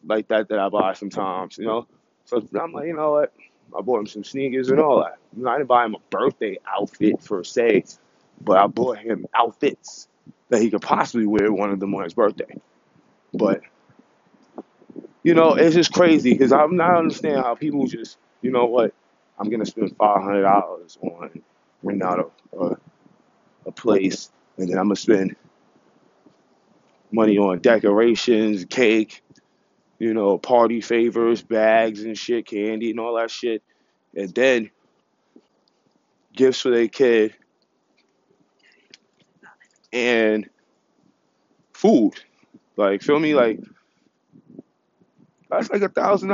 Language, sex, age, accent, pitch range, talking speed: English, male, 20-39, American, 105-150 Hz, 145 wpm